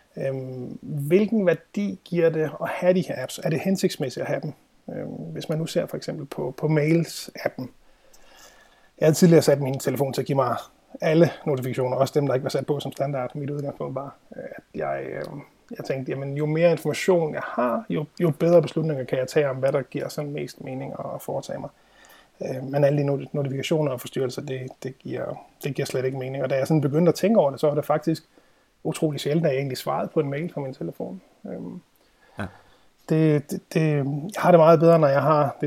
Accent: native